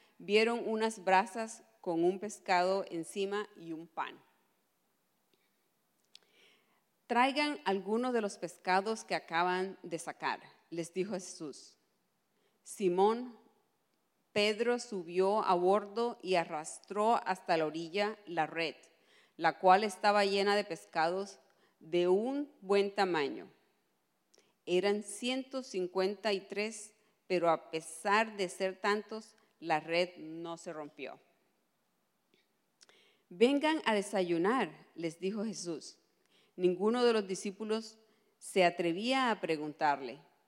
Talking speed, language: 110 wpm, English